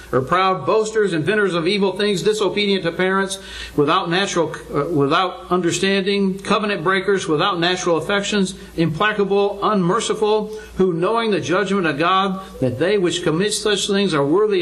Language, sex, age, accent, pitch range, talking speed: English, male, 60-79, American, 165-225 Hz, 150 wpm